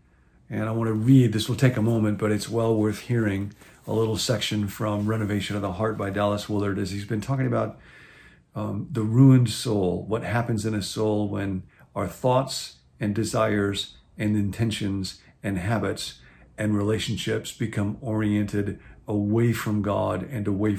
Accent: American